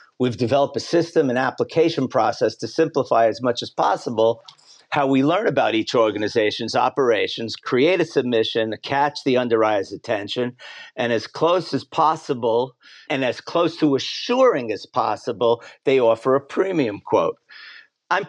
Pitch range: 120-165 Hz